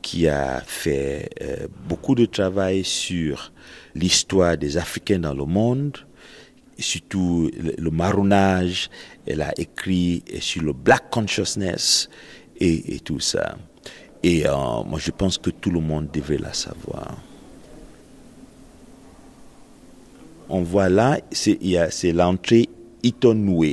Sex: male